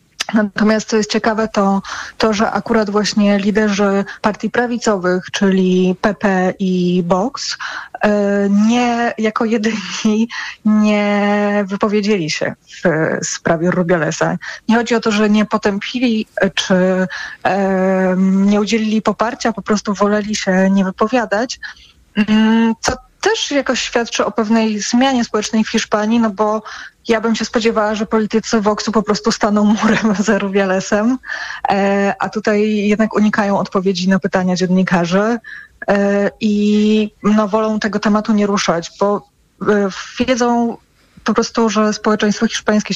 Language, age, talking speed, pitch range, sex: Polish, 20-39, 125 wpm, 195-220 Hz, female